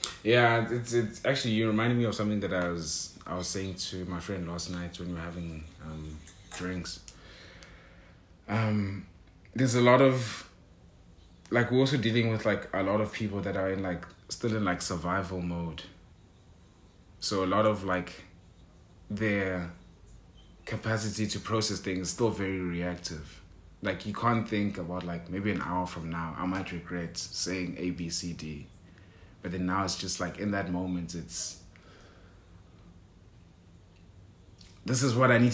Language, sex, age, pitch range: English, male, 30-49, 90-105 Hz